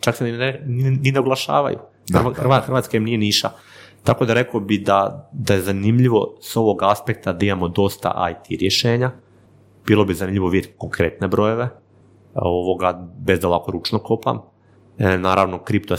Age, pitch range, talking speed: 30-49, 90-110 Hz, 145 wpm